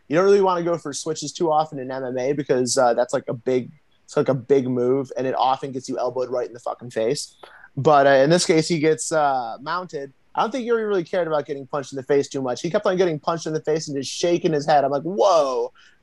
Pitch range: 140-205 Hz